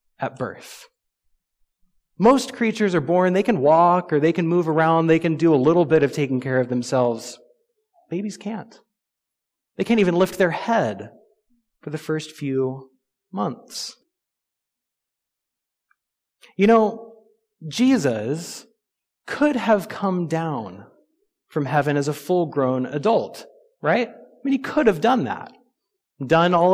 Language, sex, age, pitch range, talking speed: English, male, 30-49, 150-215 Hz, 140 wpm